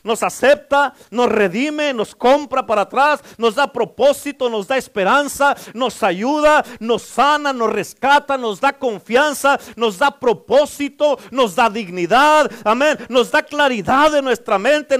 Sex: male